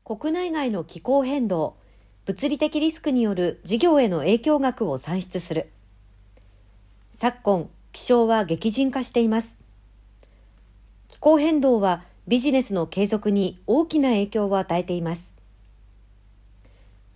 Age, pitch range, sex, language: 50-69, 165-270 Hz, male, Japanese